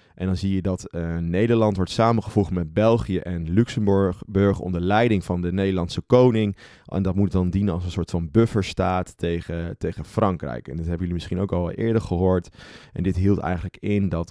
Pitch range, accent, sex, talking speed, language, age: 85-100 Hz, Dutch, male, 200 wpm, Dutch, 30-49